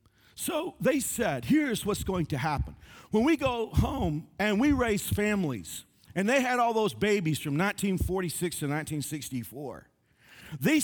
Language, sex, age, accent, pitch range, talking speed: English, male, 50-69, American, 125-190 Hz, 150 wpm